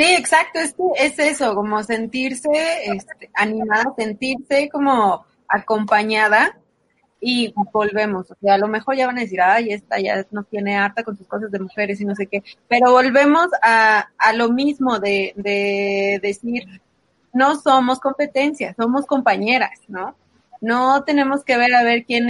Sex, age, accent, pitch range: female, 20-39, Mexican, 205-265 Hz